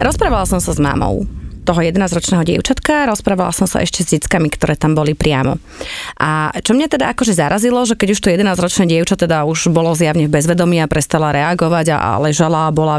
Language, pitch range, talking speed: Slovak, 160-200 Hz, 200 wpm